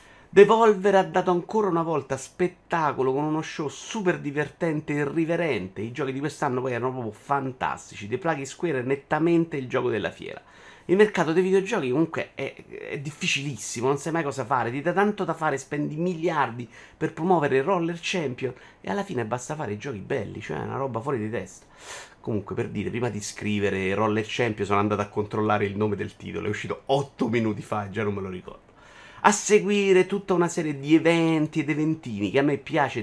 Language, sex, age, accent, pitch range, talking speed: Italian, male, 30-49, native, 115-165 Hz, 200 wpm